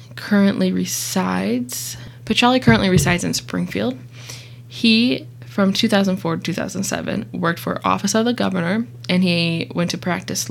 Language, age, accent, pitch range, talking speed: English, 20-39, American, 120-190 Hz, 130 wpm